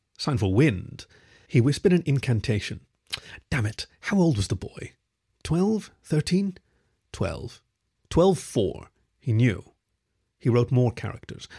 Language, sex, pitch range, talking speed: English, male, 105-135 Hz, 125 wpm